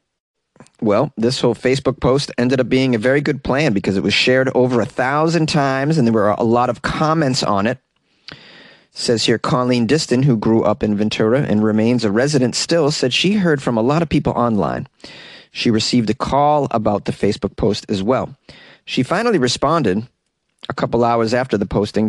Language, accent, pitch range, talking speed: English, American, 115-145 Hz, 195 wpm